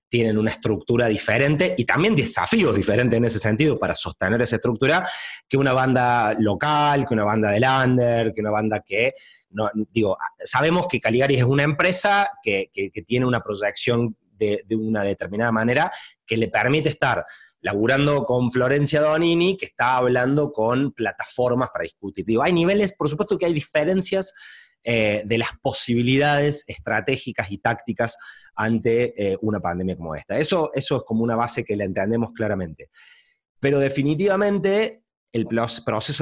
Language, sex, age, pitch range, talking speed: Spanish, male, 30-49, 115-150 Hz, 160 wpm